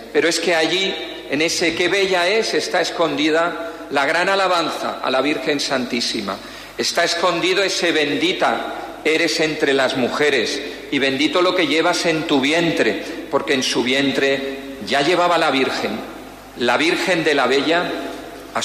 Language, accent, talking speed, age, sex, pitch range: Spanish, Spanish, 155 wpm, 50-69, male, 155-195 Hz